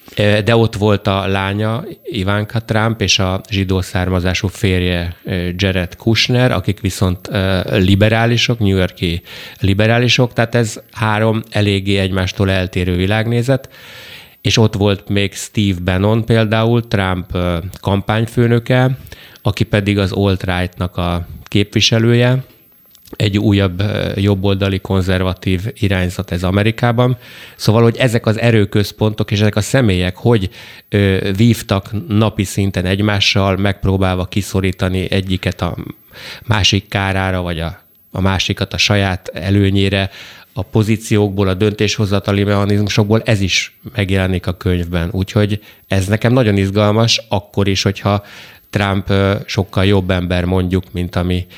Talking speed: 115 wpm